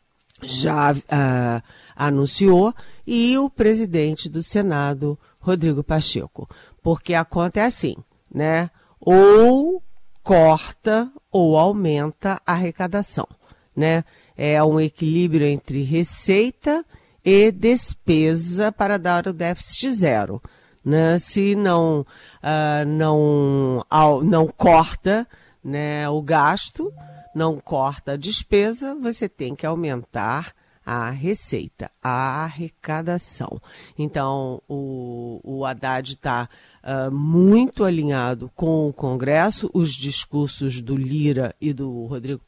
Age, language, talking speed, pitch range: 40-59, Portuguese, 100 wpm, 135-190 Hz